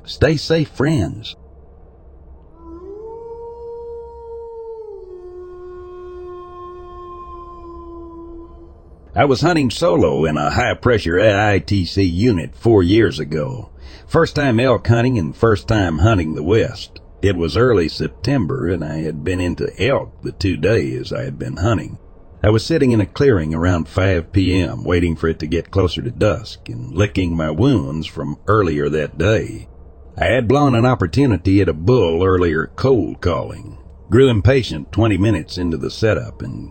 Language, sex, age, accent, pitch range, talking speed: English, male, 60-79, American, 85-130 Hz, 140 wpm